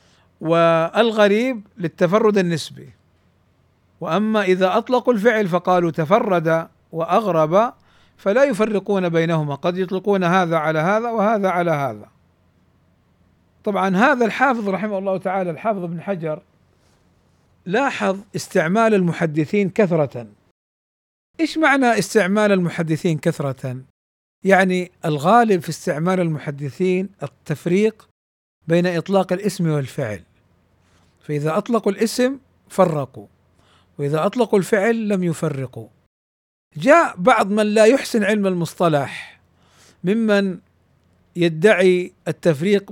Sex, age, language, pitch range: male, 50-69, Arabic, 140-195 Hz